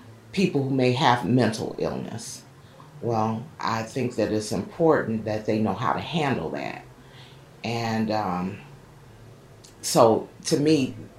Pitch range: 115-135 Hz